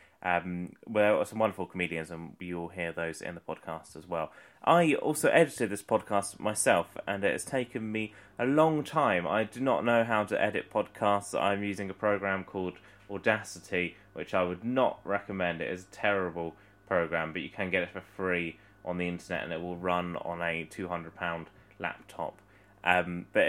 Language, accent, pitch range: English, British, 90-100 Hz